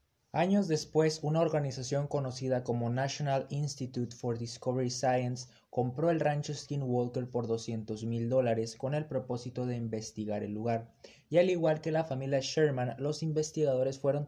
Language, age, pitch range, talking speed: Spanish, 20-39, 115-140 Hz, 150 wpm